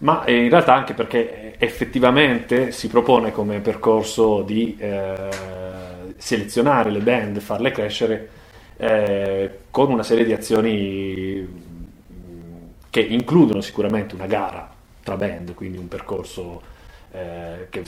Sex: male